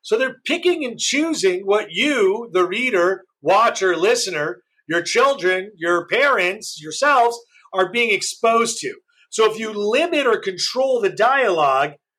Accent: American